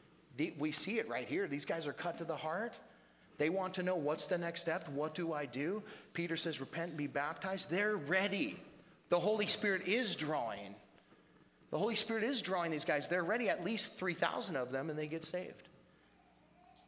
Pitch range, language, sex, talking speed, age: 120-155 Hz, English, male, 195 wpm, 30-49